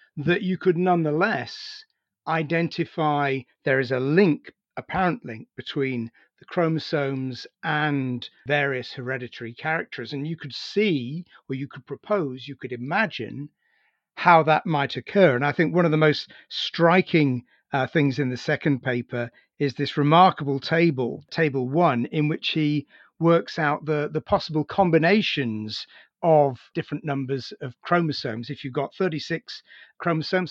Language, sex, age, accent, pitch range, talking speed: English, male, 40-59, British, 135-180 Hz, 140 wpm